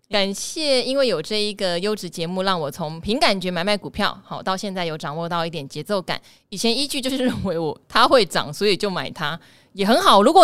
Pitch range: 175-245 Hz